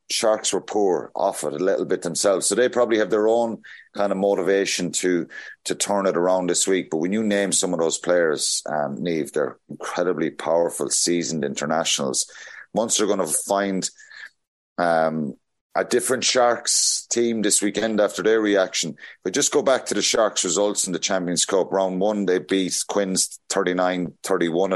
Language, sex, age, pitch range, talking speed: English, male, 30-49, 90-110 Hz, 180 wpm